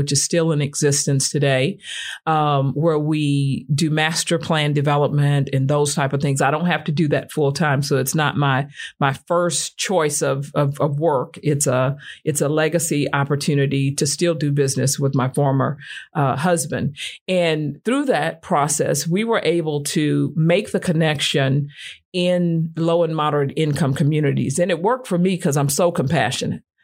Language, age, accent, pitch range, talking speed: English, 50-69, American, 140-165 Hz, 175 wpm